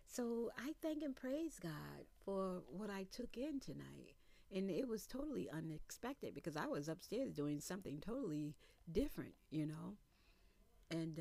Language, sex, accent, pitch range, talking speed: English, female, American, 145-190 Hz, 150 wpm